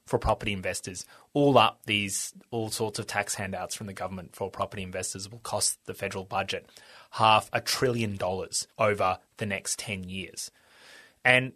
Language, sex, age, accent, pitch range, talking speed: English, male, 20-39, Australian, 105-130 Hz, 165 wpm